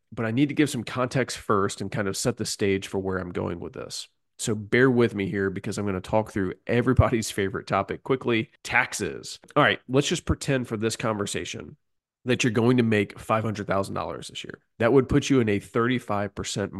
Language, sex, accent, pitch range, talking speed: English, male, American, 95-120 Hz, 210 wpm